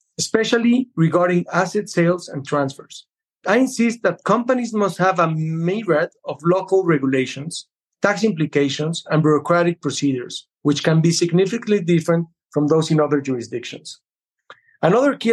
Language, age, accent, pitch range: English, 40-59, Mexican, 150-190 Hz